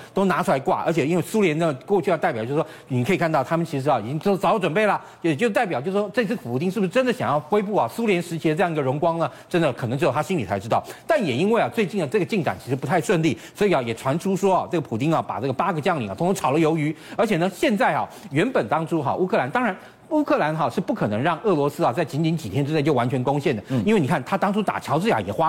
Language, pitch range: Chinese, 145-200 Hz